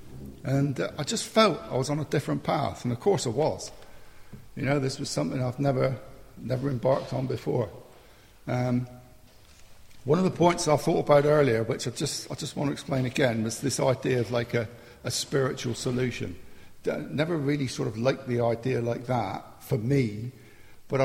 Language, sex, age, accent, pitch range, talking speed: English, male, 60-79, British, 120-160 Hz, 190 wpm